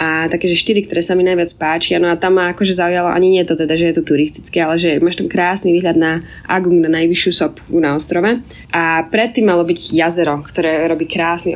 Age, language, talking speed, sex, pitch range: 20-39, Slovak, 230 wpm, female, 165-185 Hz